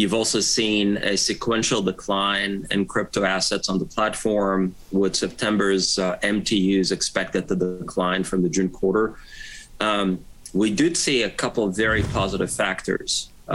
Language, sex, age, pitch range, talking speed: English, male, 30-49, 95-105 Hz, 145 wpm